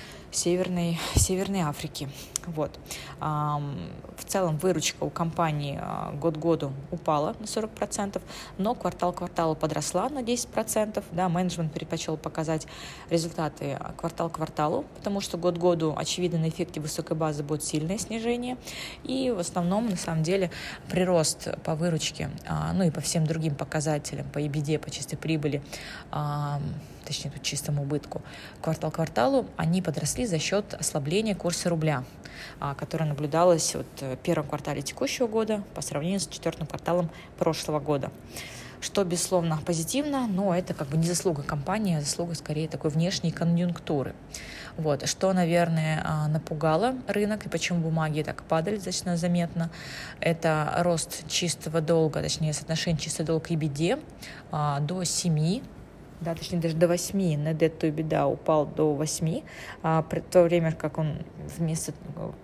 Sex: female